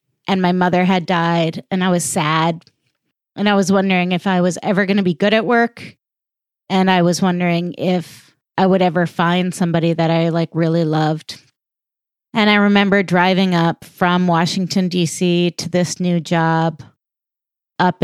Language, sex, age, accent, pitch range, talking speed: English, female, 30-49, American, 165-185 Hz, 170 wpm